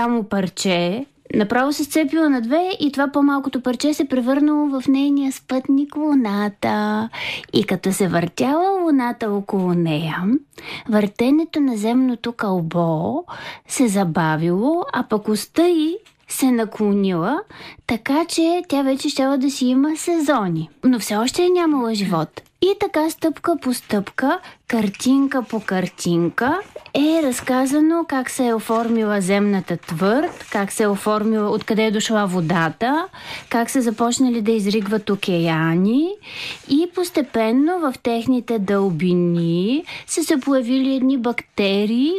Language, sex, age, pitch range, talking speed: Bulgarian, female, 20-39, 210-300 Hz, 130 wpm